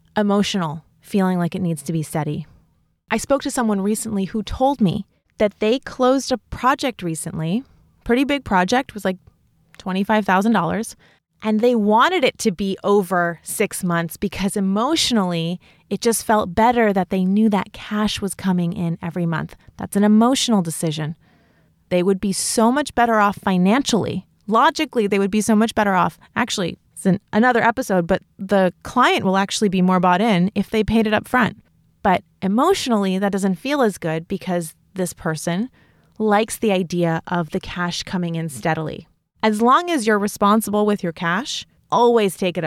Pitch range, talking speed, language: 180-225 Hz, 170 wpm, English